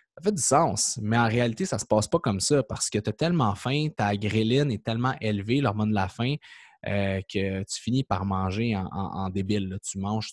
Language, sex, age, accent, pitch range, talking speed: French, male, 20-39, Canadian, 105-135 Hz, 245 wpm